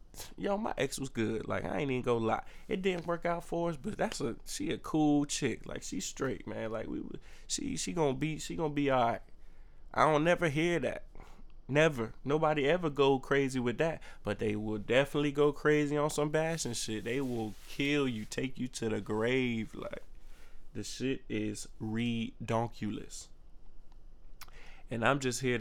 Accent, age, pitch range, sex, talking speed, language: American, 20-39, 100-130 Hz, male, 185 wpm, English